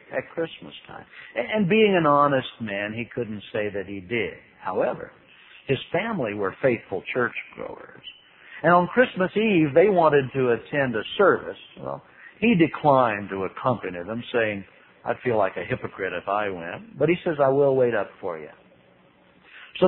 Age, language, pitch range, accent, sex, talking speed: 60-79, English, 115-185 Hz, American, male, 170 wpm